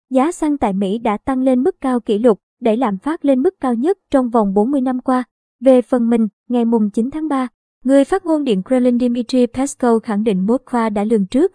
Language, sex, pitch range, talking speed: Vietnamese, male, 215-270 Hz, 230 wpm